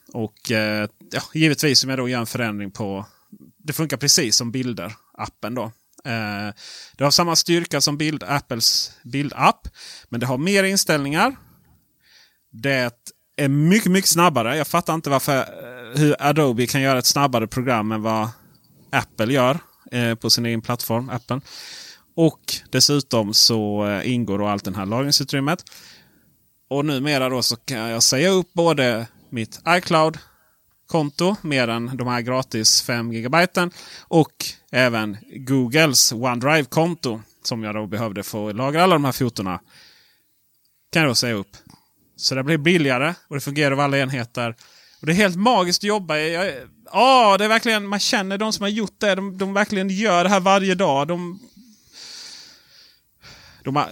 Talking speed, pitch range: 155 wpm, 120-165 Hz